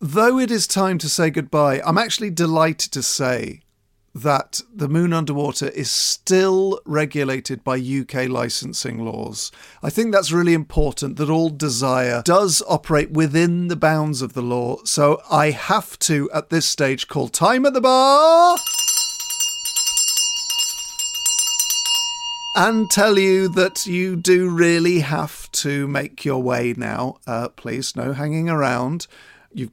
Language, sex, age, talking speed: English, male, 50-69, 140 wpm